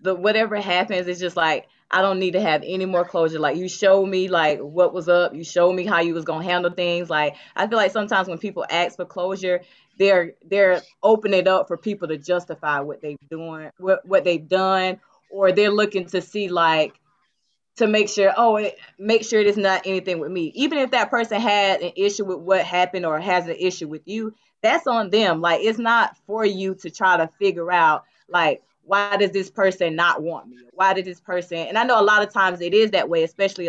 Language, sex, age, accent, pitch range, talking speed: English, female, 20-39, American, 175-215 Hz, 230 wpm